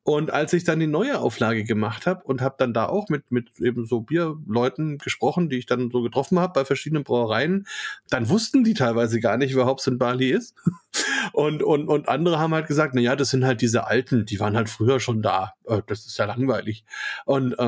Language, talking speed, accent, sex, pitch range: German, 220 wpm, German, male, 125-150 Hz